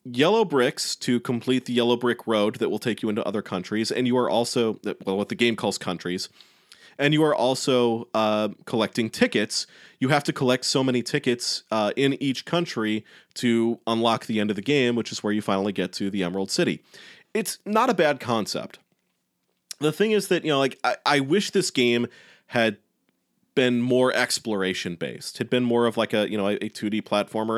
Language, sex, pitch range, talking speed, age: English, male, 110-145 Hz, 200 wpm, 30-49